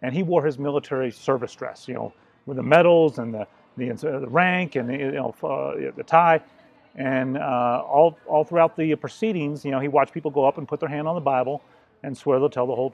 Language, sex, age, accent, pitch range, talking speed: English, male, 40-59, American, 130-165 Hz, 235 wpm